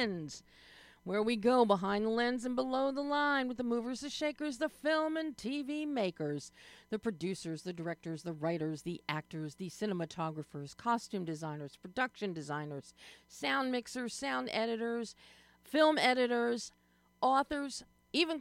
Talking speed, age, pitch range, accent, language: 135 wpm, 50-69, 175-250 Hz, American, English